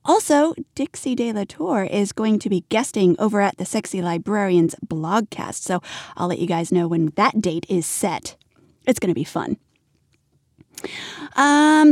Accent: American